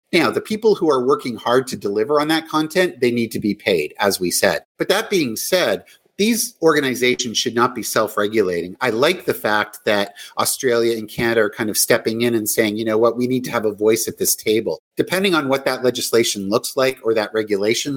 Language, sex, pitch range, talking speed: English, male, 110-155 Hz, 225 wpm